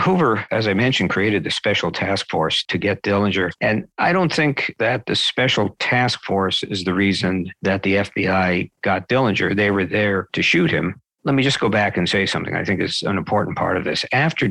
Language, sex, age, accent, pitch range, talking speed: English, male, 50-69, American, 95-105 Hz, 215 wpm